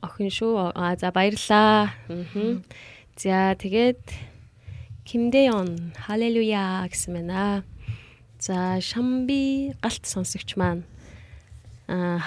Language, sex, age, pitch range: Korean, female, 20-39, 180-230 Hz